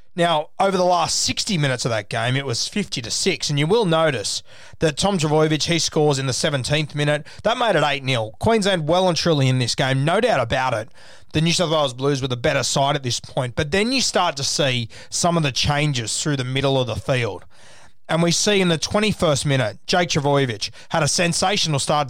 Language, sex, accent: English, male, Australian